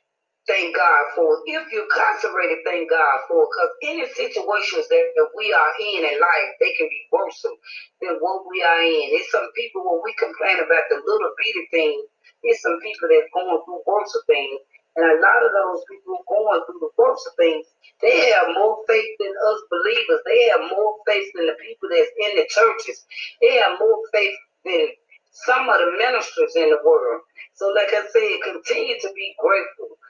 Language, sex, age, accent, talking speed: English, female, 30-49, American, 190 wpm